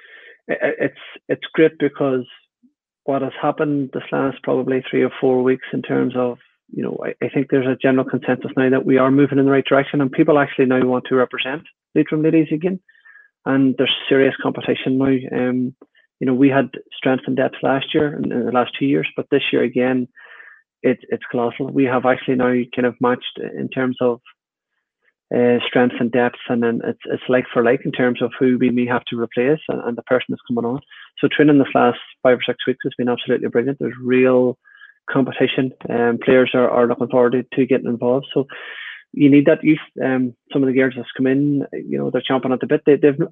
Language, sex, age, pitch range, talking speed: English, male, 20-39, 125-145 Hz, 215 wpm